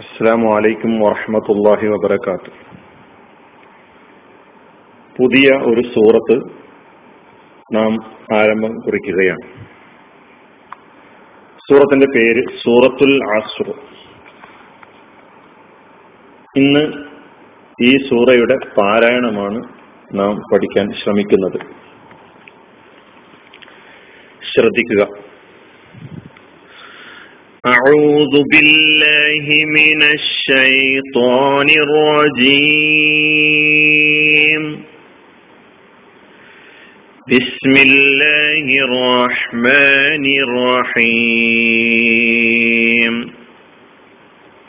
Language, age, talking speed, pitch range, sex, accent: Malayalam, 40-59, 40 wpm, 120-150 Hz, male, native